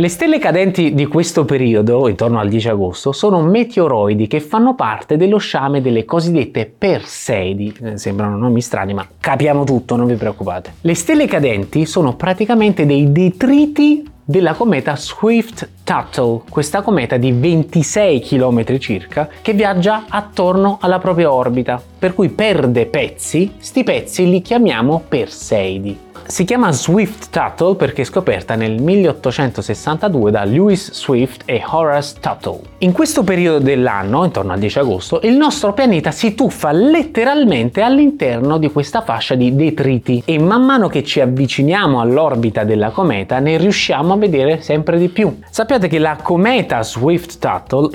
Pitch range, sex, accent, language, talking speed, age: 120-190 Hz, male, native, Italian, 145 wpm, 20-39